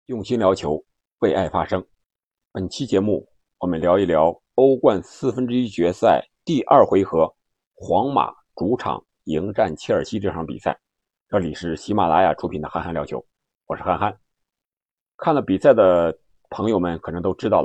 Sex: male